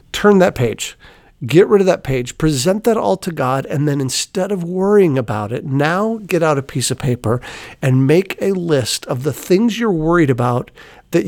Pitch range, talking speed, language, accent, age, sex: 135-185 Hz, 200 wpm, English, American, 50-69, male